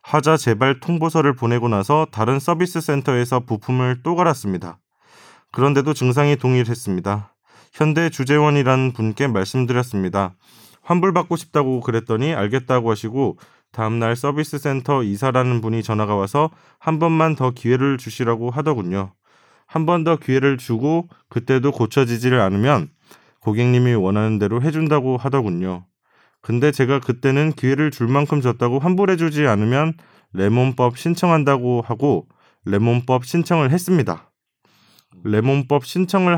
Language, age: Korean, 20-39